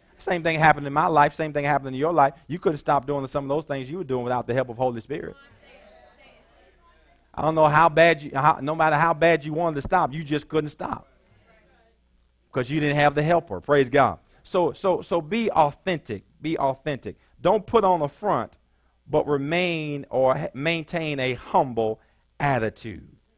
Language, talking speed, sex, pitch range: English, 195 wpm, male, 130-160 Hz